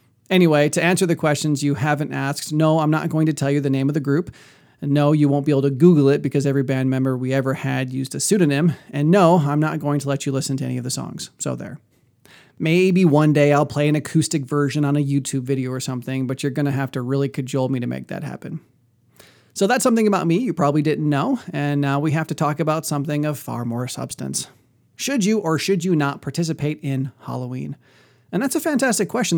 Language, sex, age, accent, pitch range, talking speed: English, male, 30-49, American, 140-165 Hz, 235 wpm